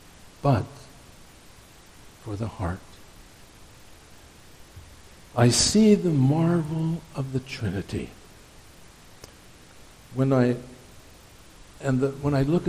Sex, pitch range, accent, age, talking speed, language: male, 110-150 Hz, American, 60-79, 70 wpm, English